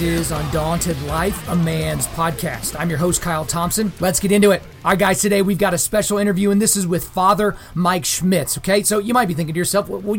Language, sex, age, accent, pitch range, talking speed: English, male, 30-49, American, 160-185 Hz, 240 wpm